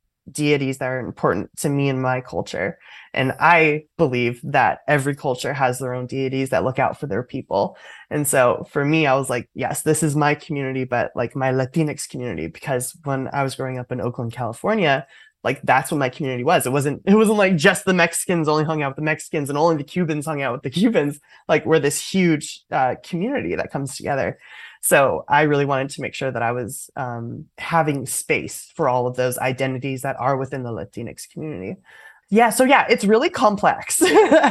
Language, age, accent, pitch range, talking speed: English, 20-39, American, 130-160 Hz, 205 wpm